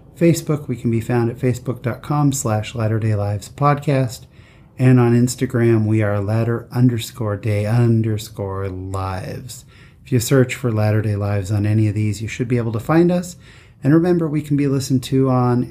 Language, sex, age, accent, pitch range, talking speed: English, male, 30-49, American, 110-135 Hz, 175 wpm